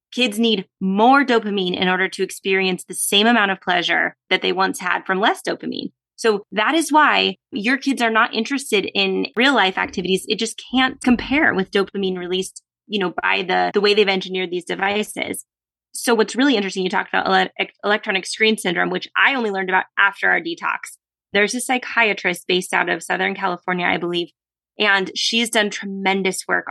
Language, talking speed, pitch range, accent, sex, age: English, 185 wpm, 185-235 Hz, American, female, 20-39